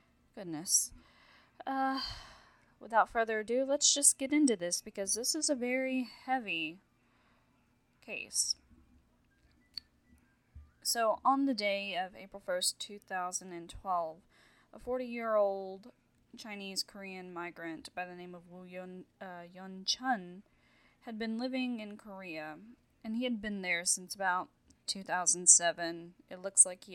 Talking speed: 130 wpm